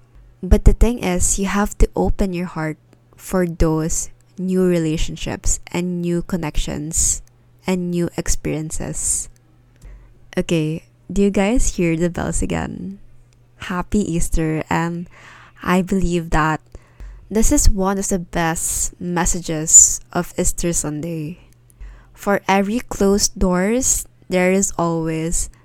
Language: Filipino